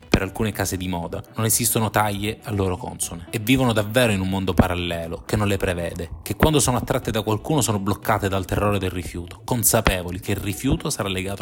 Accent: native